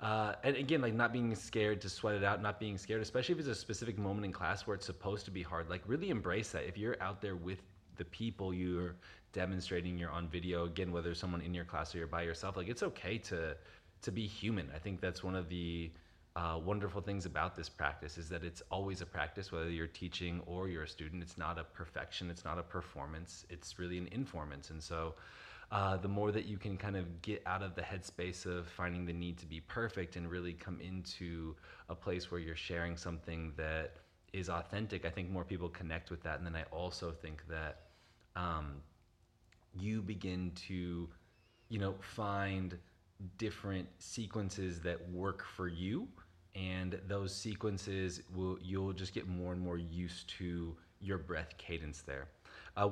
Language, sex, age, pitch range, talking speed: English, male, 20-39, 85-100 Hz, 200 wpm